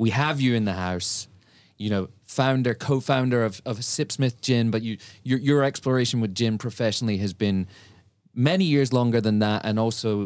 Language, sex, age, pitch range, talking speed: English, male, 30-49, 100-130 Hz, 180 wpm